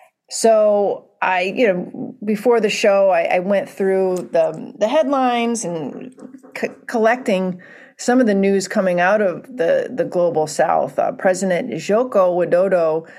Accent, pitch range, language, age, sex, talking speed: American, 175-210 Hz, English, 40-59, female, 140 wpm